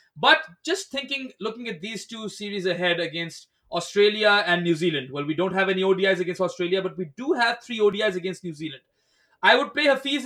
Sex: male